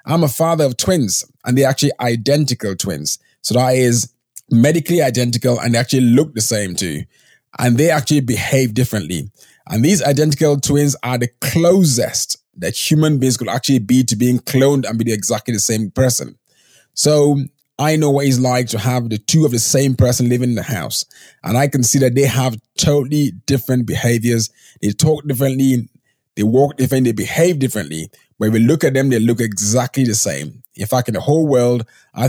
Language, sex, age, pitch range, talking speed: English, male, 20-39, 120-145 Hz, 190 wpm